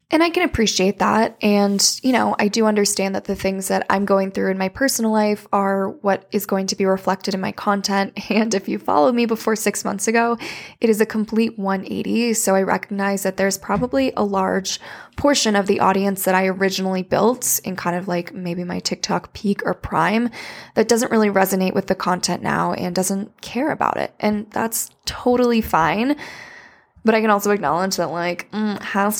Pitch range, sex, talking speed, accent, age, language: 190-225 Hz, female, 200 wpm, American, 10-29, English